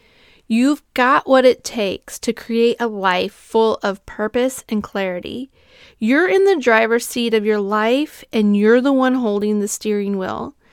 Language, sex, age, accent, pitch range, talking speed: English, female, 40-59, American, 200-250 Hz, 170 wpm